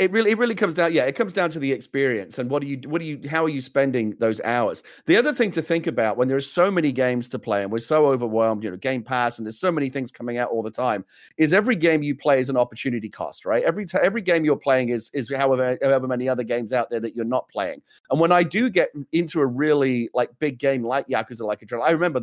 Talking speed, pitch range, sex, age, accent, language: 285 wpm, 125-155 Hz, male, 40-59, British, English